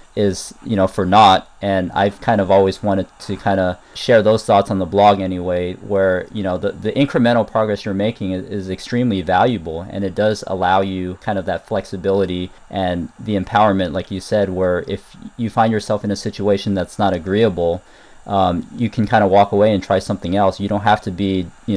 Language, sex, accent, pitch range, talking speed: English, male, American, 90-105 Hz, 210 wpm